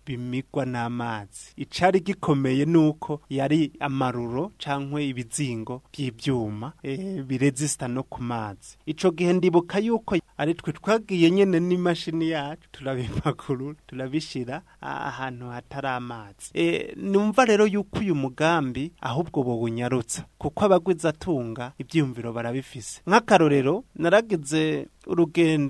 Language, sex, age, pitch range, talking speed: French, male, 30-49, 130-175 Hz, 105 wpm